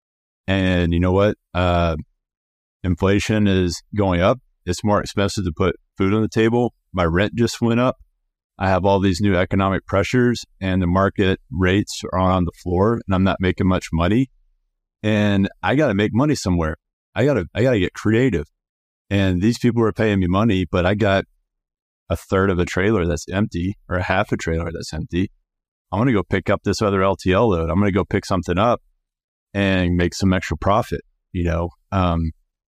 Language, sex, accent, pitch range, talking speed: English, male, American, 85-100 Hz, 195 wpm